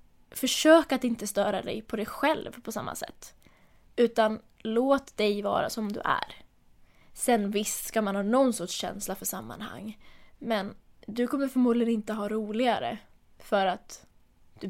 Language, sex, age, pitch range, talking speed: English, female, 20-39, 200-230 Hz, 155 wpm